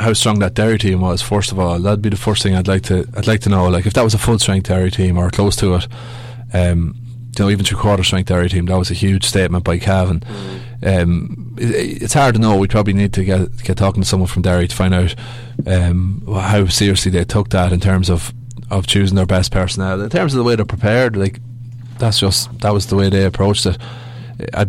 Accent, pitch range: Irish, 95-110 Hz